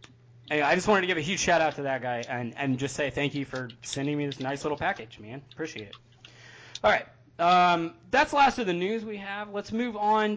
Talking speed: 235 wpm